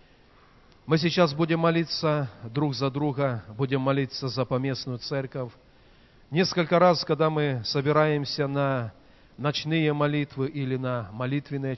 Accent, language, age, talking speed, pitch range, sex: native, Russian, 40-59, 115 wpm, 125-160 Hz, male